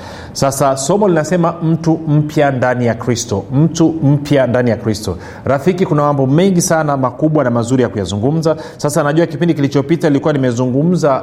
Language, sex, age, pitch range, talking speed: Swahili, male, 30-49, 125-160 Hz, 155 wpm